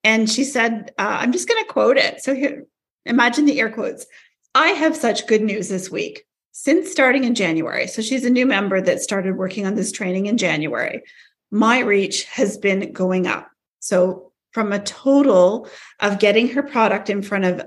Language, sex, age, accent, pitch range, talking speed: English, female, 40-59, American, 185-235 Hz, 190 wpm